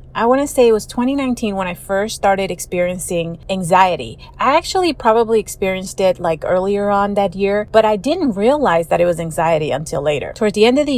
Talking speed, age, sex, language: 210 wpm, 30-49, female, English